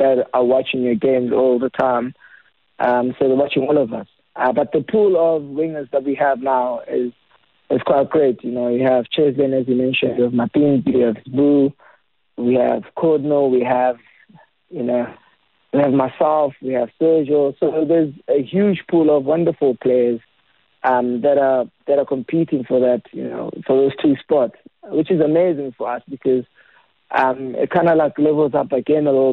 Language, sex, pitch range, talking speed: English, male, 125-150 Hz, 190 wpm